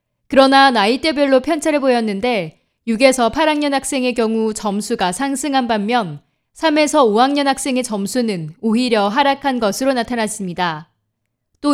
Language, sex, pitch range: Korean, female, 210-275 Hz